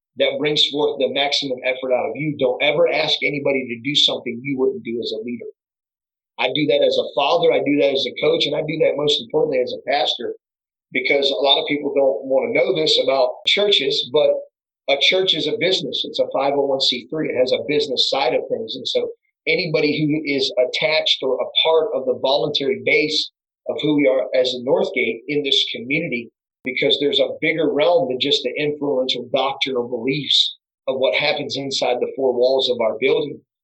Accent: American